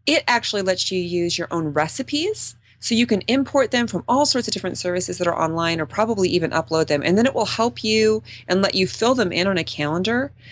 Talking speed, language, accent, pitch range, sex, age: 240 wpm, English, American, 160-215 Hz, female, 30-49